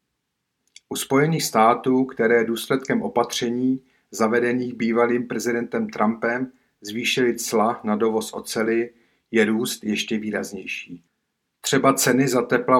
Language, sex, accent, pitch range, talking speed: Czech, male, native, 110-130 Hz, 110 wpm